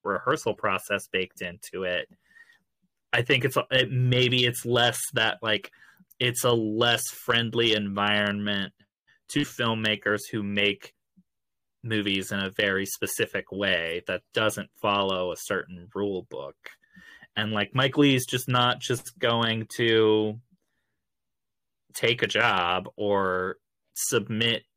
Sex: male